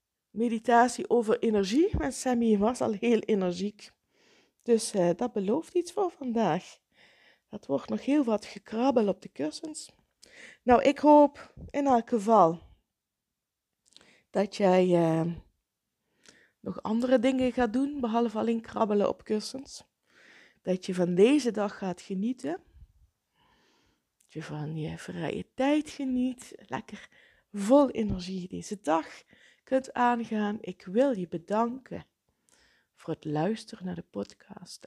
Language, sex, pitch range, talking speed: Dutch, female, 175-250 Hz, 125 wpm